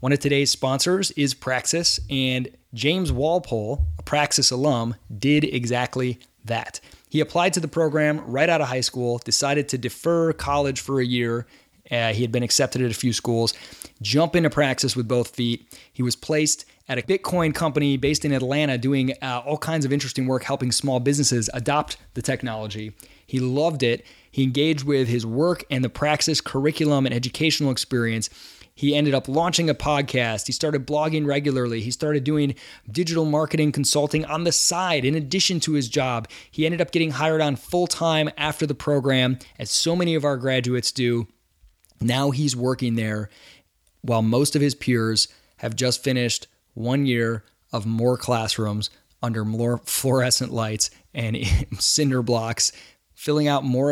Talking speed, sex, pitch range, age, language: 170 wpm, male, 120-150 Hz, 20-39, English